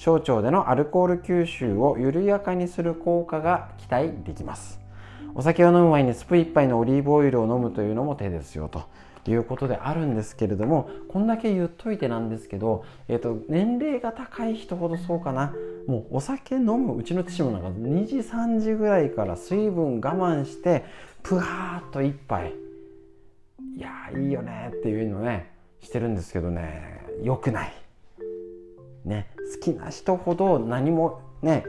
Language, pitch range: Japanese, 105-175 Hz